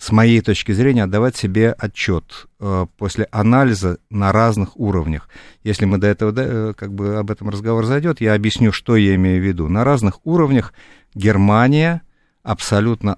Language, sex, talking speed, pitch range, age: Russian, male, 165 wpm, 90-120 Hz, 50-69